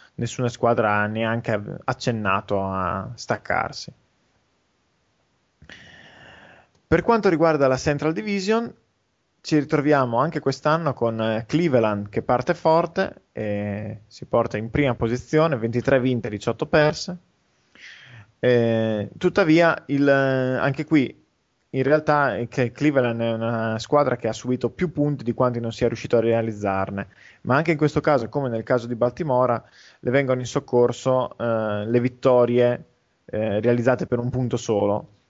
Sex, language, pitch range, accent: male, Italian, 115-150 Hz, native